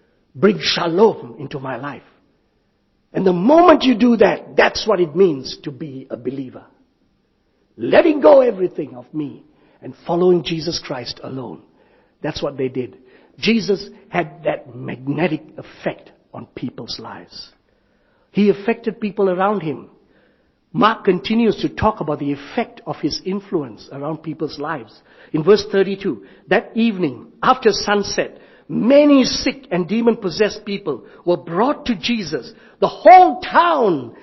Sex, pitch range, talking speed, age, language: male, 175-280 Hz, 135 wpm, 60-79, English